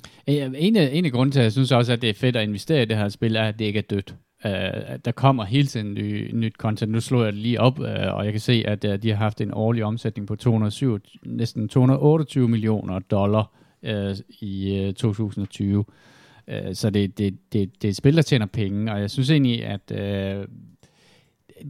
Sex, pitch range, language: male, 100-120 Hz, Danish